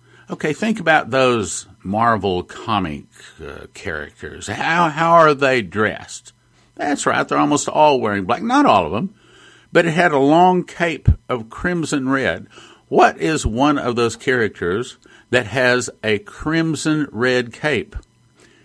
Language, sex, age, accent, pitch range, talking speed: English, male, 50-69, American, 115-150 Hz, 145 wpm